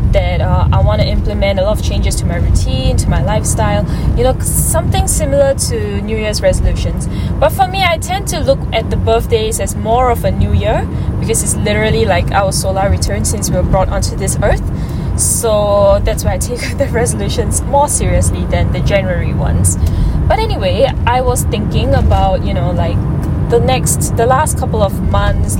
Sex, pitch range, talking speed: female, 85-100 Hz, 195 wpm